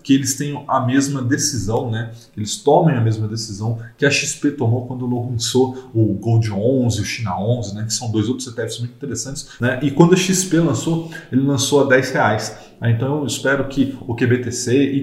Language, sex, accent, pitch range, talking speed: Portuguese, male, Brazilian, 115-150 Hz, 195 wpm